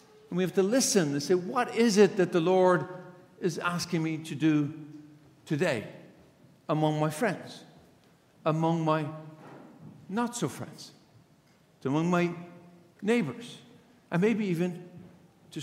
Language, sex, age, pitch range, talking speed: English, male, 50-69, 140-180 Hz, 125 wpm